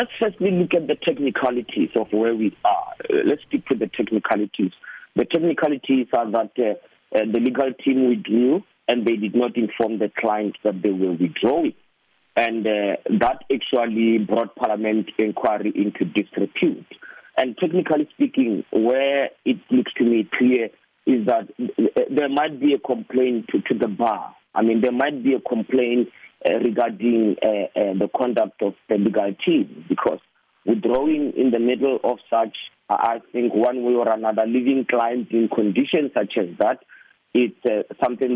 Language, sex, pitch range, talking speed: English, male, 115-140 Hz, 160 wpm